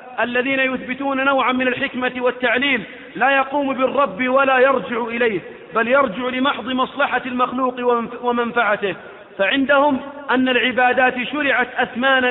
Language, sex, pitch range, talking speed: Arabic, male, 240-260 Hz, 110 wpm